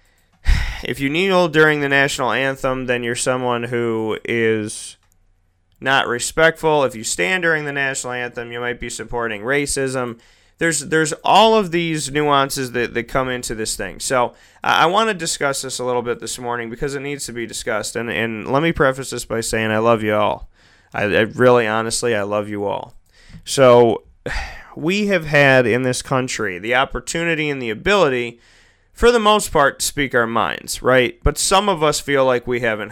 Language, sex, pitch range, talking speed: English, male, 115-140 Hz, 190 wpm